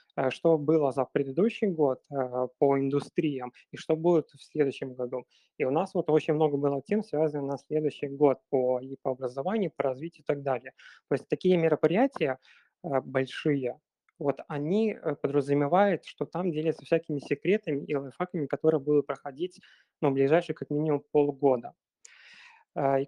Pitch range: 140-165 Hz